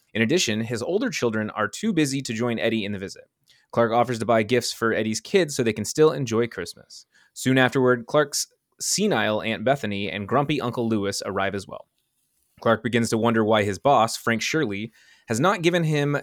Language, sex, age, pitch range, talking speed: English, male, 20-39, 105-145 Hz, 200 wpm